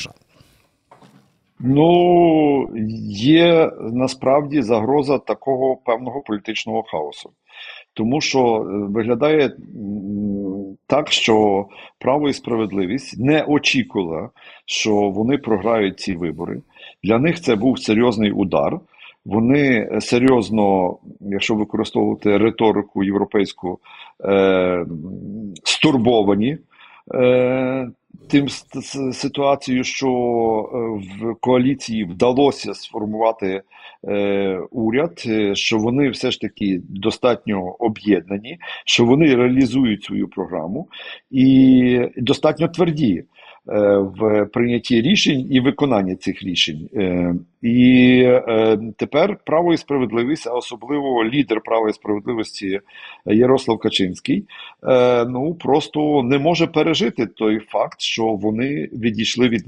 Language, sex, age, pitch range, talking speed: Ukrainian, male, 50-69, 105-135 Hz, 90 wpm